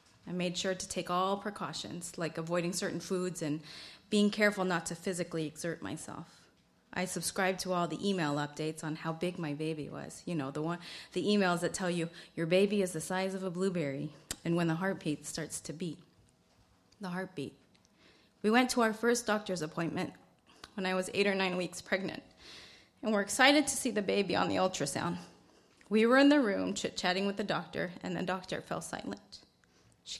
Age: 30-49